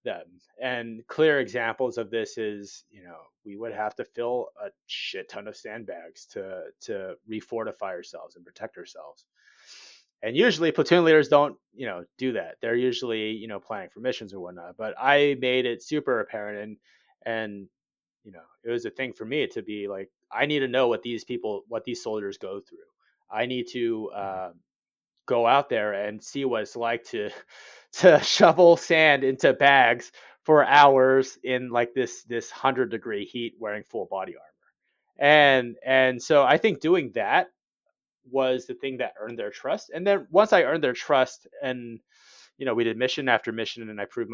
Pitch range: 110-145 Hz